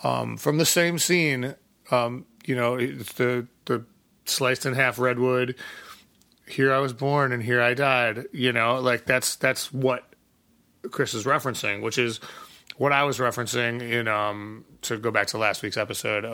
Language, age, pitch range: English, 30-49, 115-135 Hz